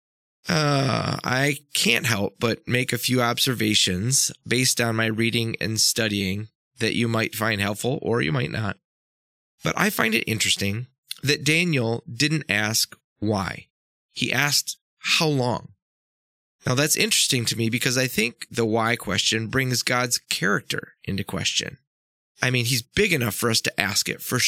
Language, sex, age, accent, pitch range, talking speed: English, male, 20-39, American, 105-135 Hz, 160 wpm